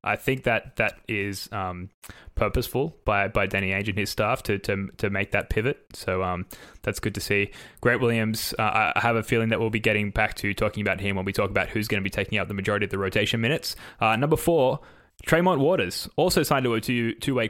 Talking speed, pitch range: 235 wpm, 105-120 Hz